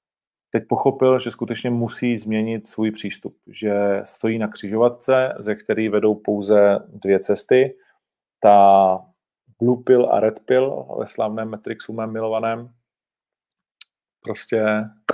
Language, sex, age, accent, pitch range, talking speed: Czech, male, 40-59, native, 105-115 Hz, 120 wpm